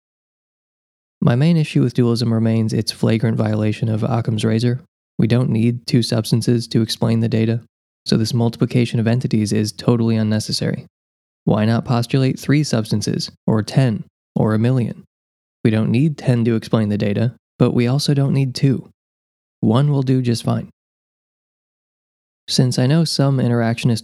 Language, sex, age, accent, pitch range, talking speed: English, male, 20-39, American, 110-125 Hz, 155 wpm